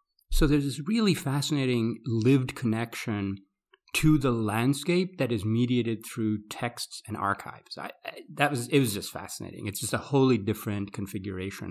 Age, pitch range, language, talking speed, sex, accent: 30-49, 105-145 Hz, English, 160 wpm, male, American